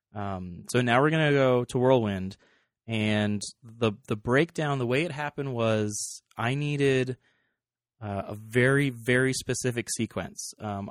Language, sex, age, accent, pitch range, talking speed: English, male, 30-49, American, 105-130 Hz, 145 wpm